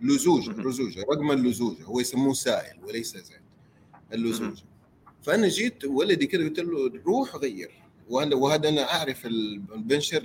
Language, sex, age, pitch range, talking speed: Arabic, male, 30-49, 110-145 Hz, 130 wpm